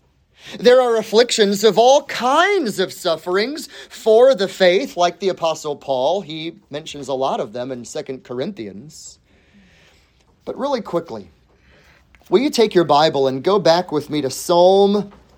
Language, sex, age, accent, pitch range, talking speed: English, male, 30-49, American, 160-235 Hz, 150 wpm